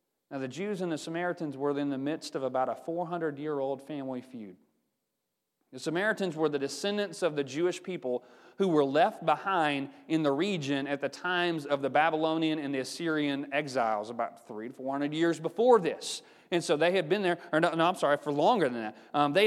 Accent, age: American, 30-49